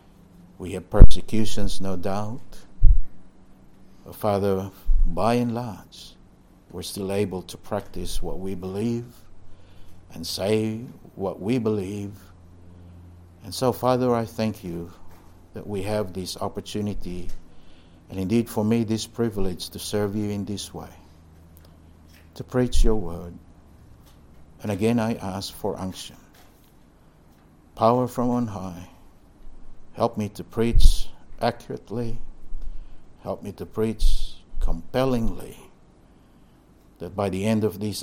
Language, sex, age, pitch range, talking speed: English, male, 60-79, 85-110 Hz, 120 wpm